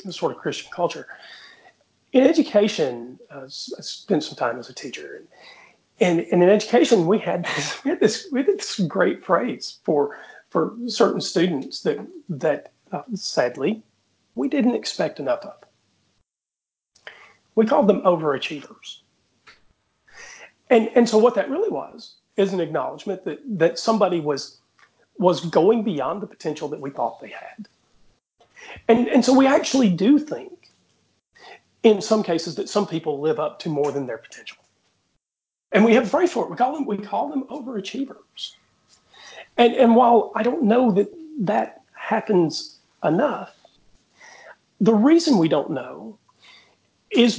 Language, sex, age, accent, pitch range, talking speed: English, male, 40-59, American, 175-250 Hz, 150 wpm